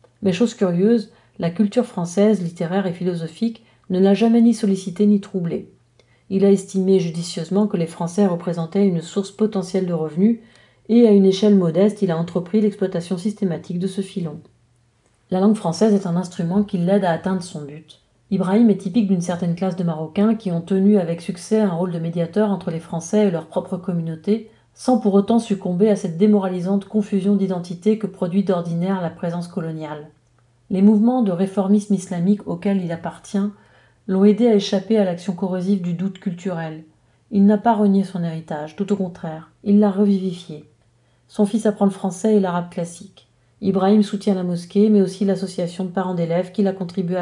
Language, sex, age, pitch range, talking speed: French, female, 40-59, 175-205 Hz, 185 wpm